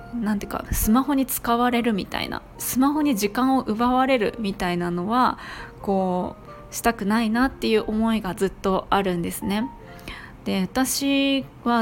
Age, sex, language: 20-39, female, Japanese